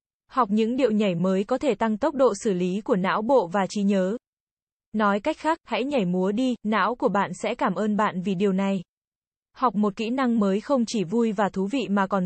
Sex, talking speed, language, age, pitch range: female, 235 wpm, Vietnamese, 20-39, 200-245 Hz